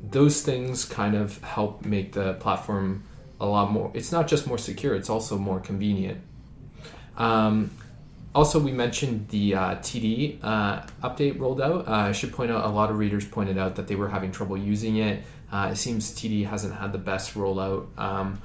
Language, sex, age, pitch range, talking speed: English, male, 20-39, 100-120 Hz, 190 wpm